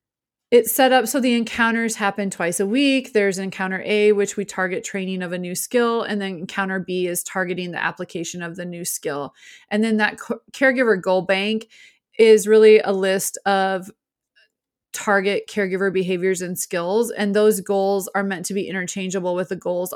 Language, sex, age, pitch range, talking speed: English, female, 30-49, 190-225 Hz, 180 wpm